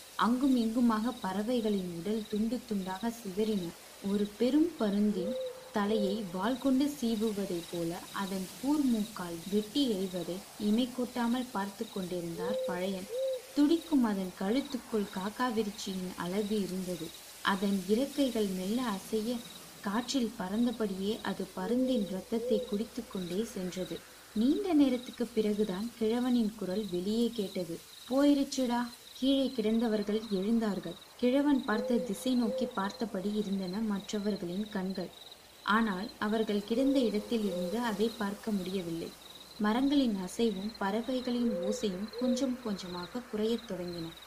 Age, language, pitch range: 20-39, Tamil, 195-240 Hz